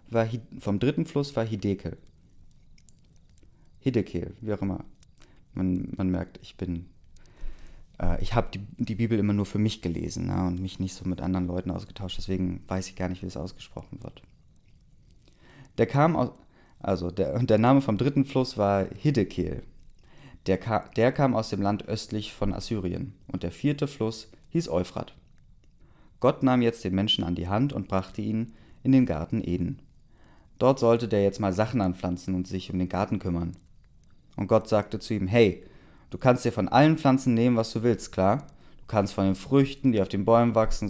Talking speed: 185 wpm